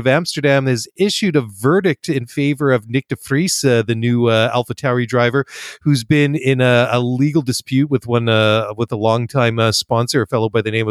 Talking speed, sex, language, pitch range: 210 wpm, male, English, 115-135 Hz